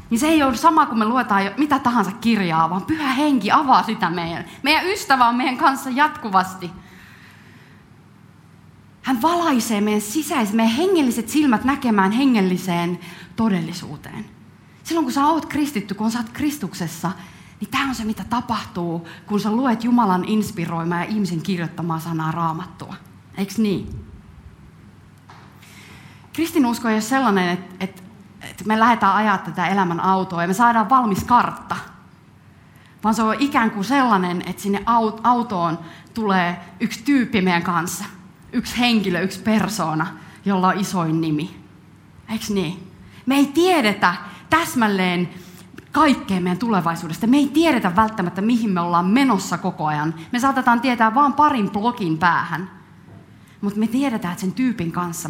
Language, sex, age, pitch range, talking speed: Finnish, female, 30-49, 175-245 Hz, 145 wpm